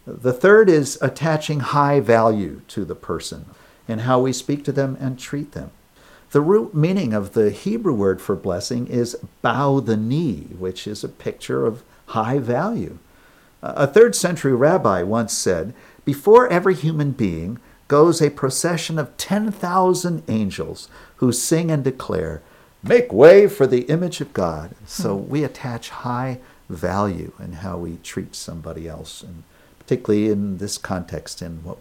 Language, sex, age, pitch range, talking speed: English, male, 50-69, 100-150 Hz, 155 wpm